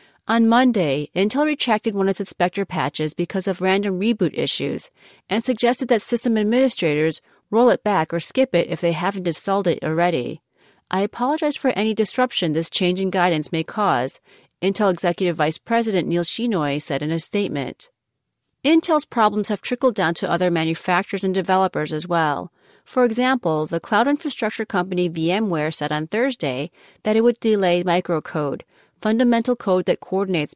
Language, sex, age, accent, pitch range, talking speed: English, female, 40-59, American, 170-225 Hz, 165 wpm